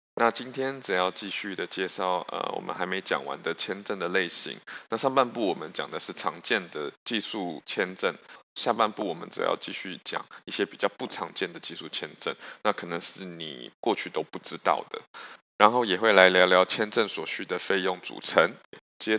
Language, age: Chinese, 20-39